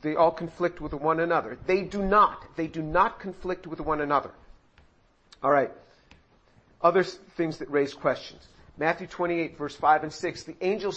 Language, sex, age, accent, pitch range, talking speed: English, male, 50-69, American, 155-185 Hz, 170 wpm